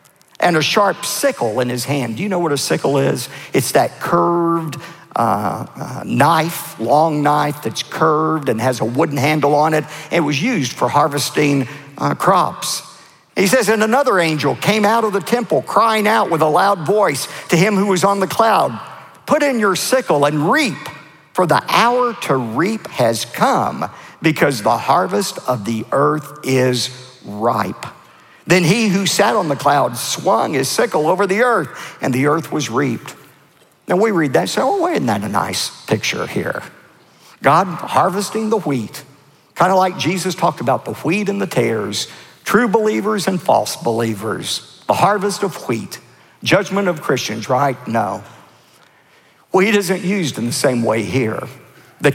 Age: 50-69